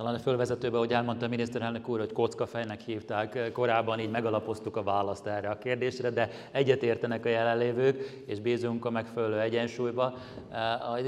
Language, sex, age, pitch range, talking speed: Hungarian, male, 30-49, 110-125 Hz, 150 wpm